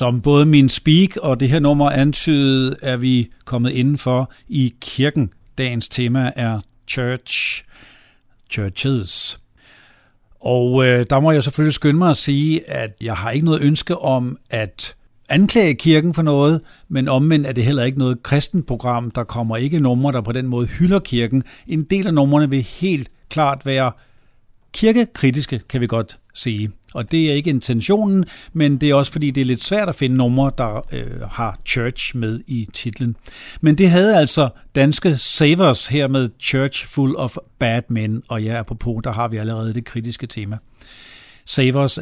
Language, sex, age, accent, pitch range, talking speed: Danish, male, 60-79, native, 115-145 Hz, 175 wpm